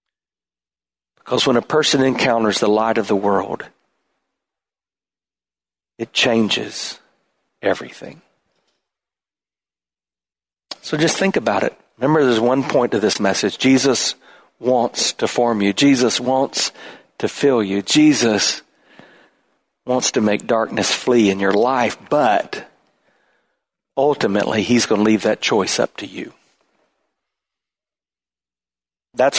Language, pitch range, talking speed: English, 75-120 Hz, 115 wpm